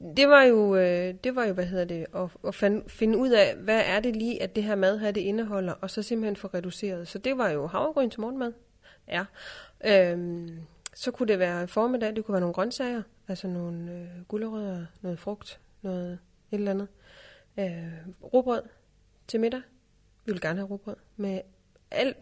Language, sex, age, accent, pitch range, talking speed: Danish, female, 20-39, native, 185-220 Hz, 190 wpm